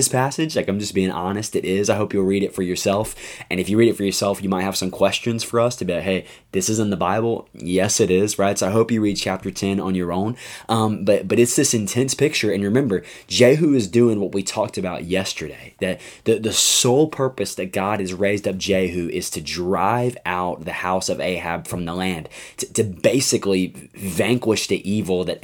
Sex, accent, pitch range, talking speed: male, American, 95-115 Hz, 235 wpm